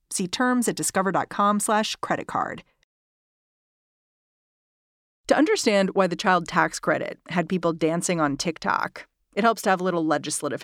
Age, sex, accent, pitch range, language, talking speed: 40-59, female, American, 165-210 Hz, English, 145 wpm